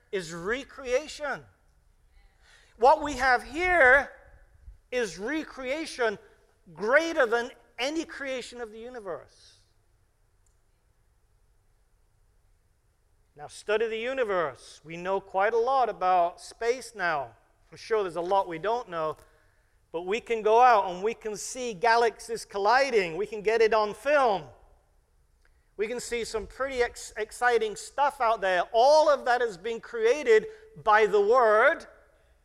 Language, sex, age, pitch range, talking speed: English, male, 50-69, 155-240 Hz, 130 wpm